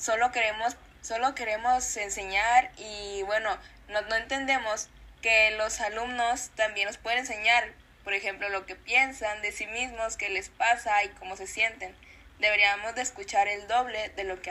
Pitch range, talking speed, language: 195-235 Hz, 165 wpm, Spanish